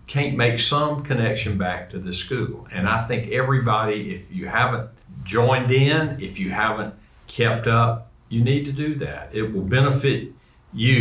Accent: American